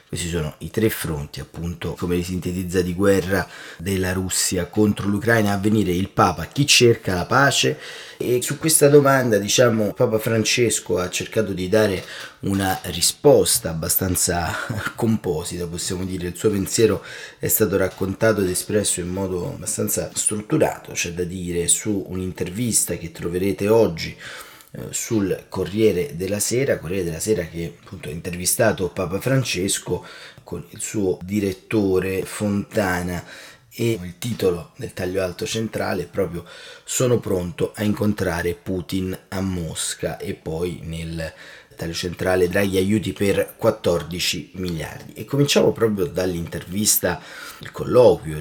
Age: 30-49